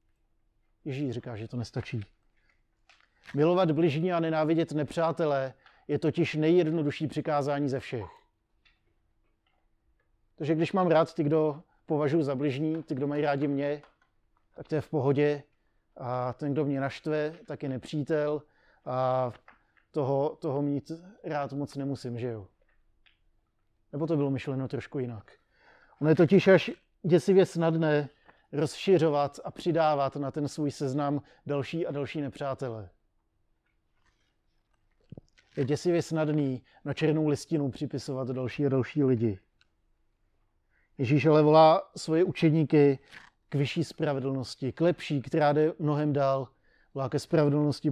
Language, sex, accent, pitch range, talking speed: Czech, male, native, 130-155 Hz, 130 wpm